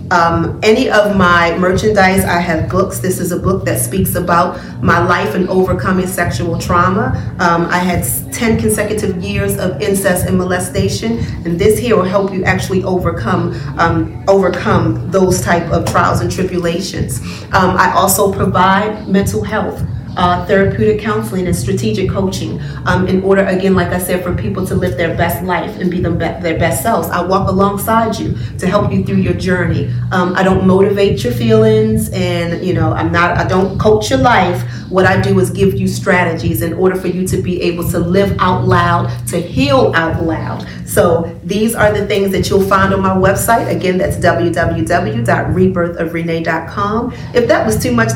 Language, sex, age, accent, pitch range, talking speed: English, female, 30-49, American, 160-190 Hz, 180 wpm